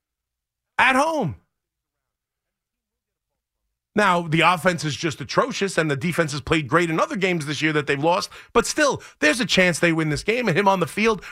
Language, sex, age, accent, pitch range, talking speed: English, male, 30-49, American, 150-205 Hz, 190 wpm